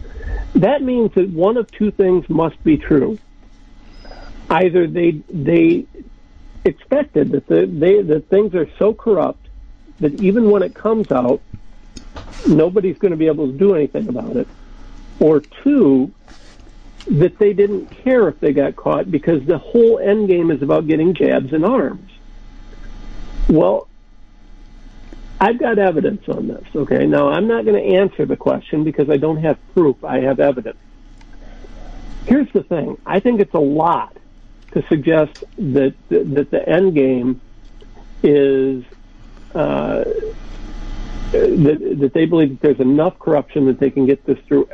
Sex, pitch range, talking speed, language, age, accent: male, 140-200 Hz, 150 wpm, English, 60-79, American